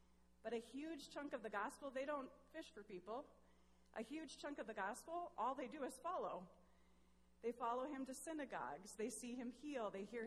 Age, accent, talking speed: 30-49, American, 200 wpm